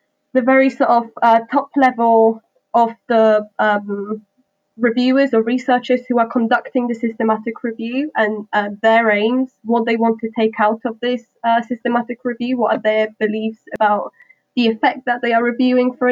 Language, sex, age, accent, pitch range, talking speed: English, female, 10-29, British, 215-245 Hz, 170 wpm